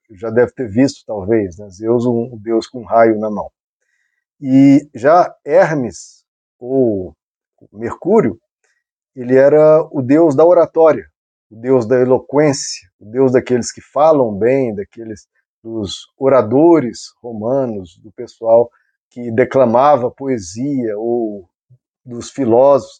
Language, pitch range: Portuguese, 115-150 Hz